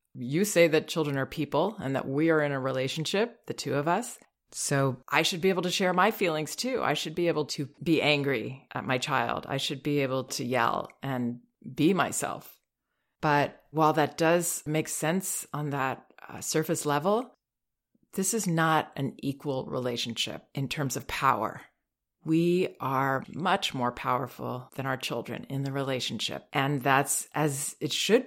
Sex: female